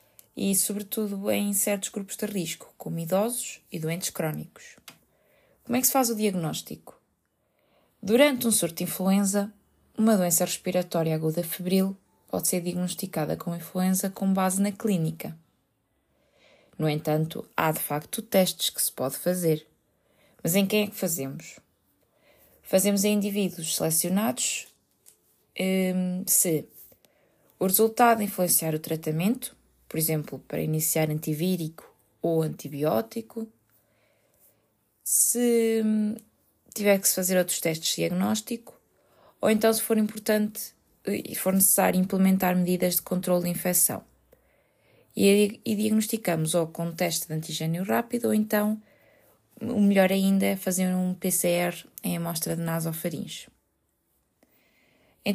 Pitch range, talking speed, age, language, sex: 165-210 Hz, 125 wpm, 20-39, Portuguese, female